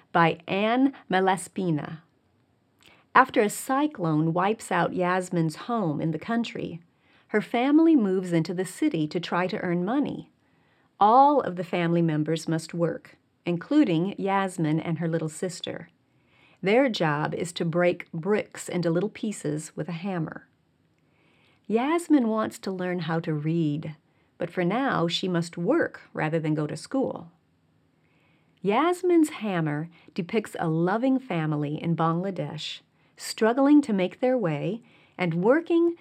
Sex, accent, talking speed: female, American, 135 wpm